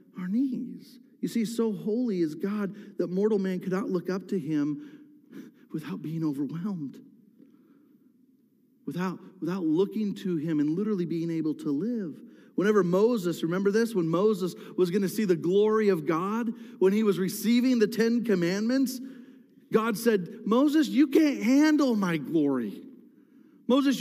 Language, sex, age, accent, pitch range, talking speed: English, male, 40-59, American, 200-265 Hz, 150 wpm